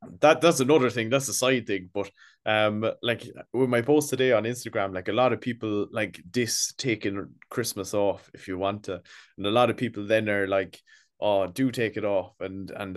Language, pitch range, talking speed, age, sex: English, 95-115 Hz, 215 wpm, 20-39, male